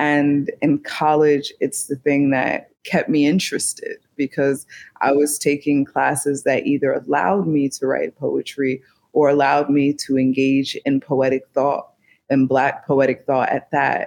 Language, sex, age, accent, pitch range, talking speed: English, female, 20-39, American, 135-150 Hz, 155 wpm